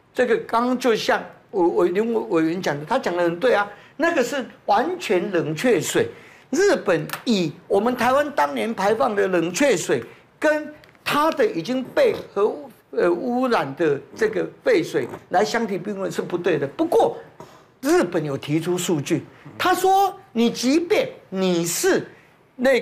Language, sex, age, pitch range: Chinese, male, 50-69, 195-315 Hz